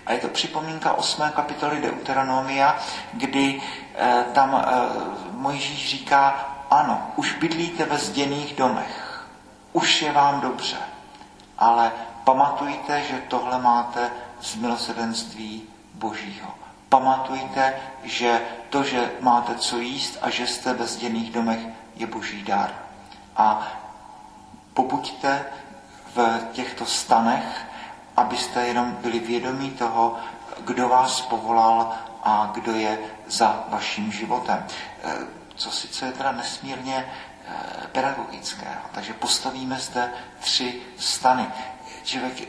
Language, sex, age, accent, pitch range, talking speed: Czech, male, 40-59, native, 115-135 Hz, 110 wpm